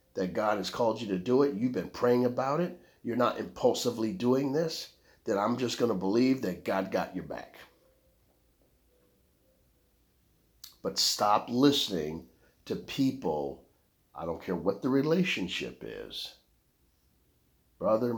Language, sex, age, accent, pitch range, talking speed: English, male, 50-69, American, 95-135 Hz, 140 wpm